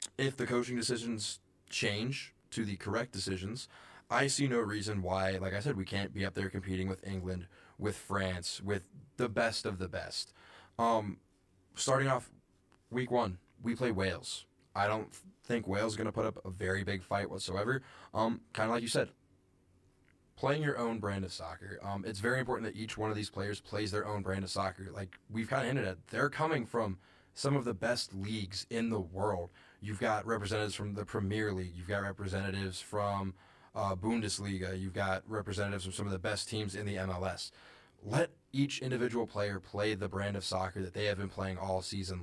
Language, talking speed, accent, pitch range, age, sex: English, 195 wpm, American, 95-115 Hz, 20-39, male